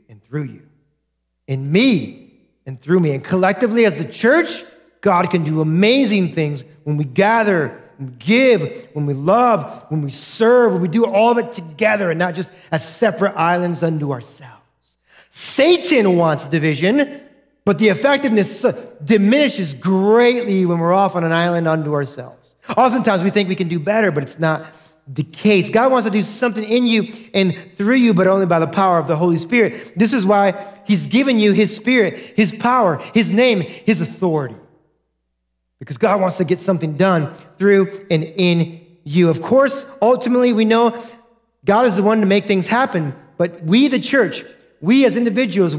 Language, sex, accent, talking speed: English, male, American, 180 wpm